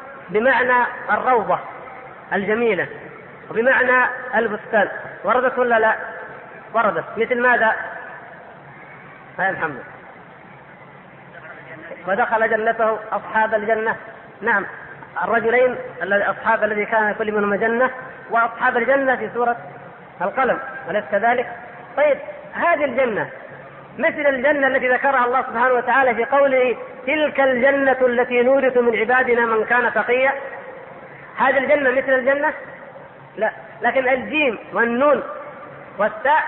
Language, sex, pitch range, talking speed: Arabic, female, 220-270 Hz, 100 wpm